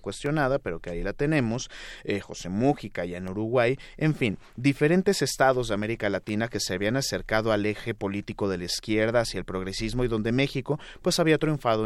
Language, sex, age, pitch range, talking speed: Spanish, male, 30-49, 100-125 Hz, 190 wpm